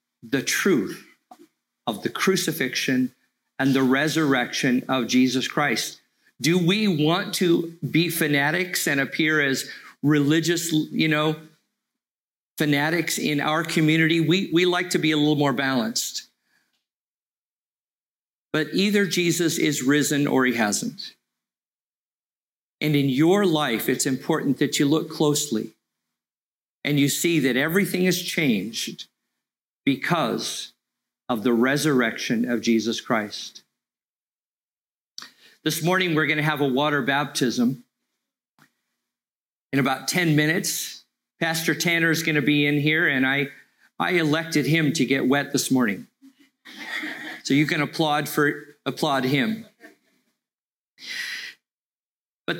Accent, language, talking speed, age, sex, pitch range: American, English, 120 wpm, 50-69, male, 135-175 Hz